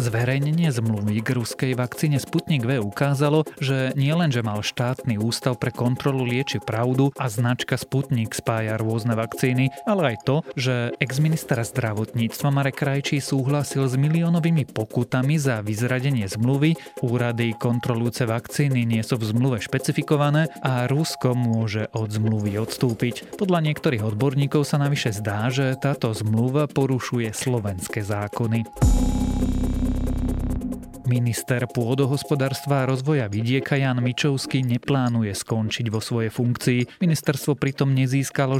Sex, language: male, Slovak